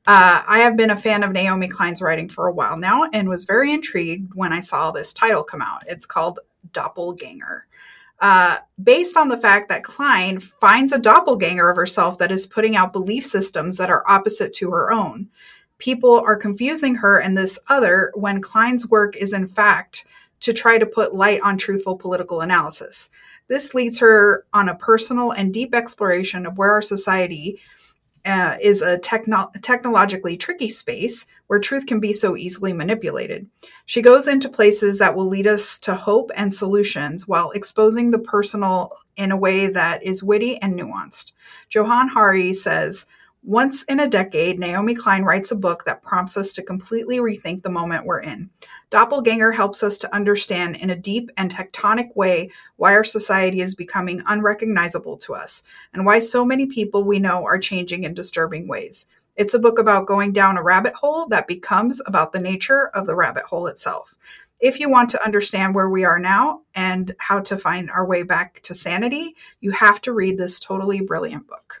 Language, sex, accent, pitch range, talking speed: English, female, American, 185-230 Hz, 185 wpm